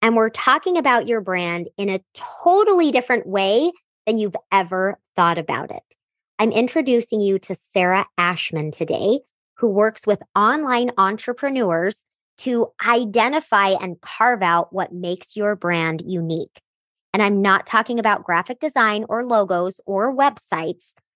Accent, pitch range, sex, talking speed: American, 185-235 Hz, male, 140 wpm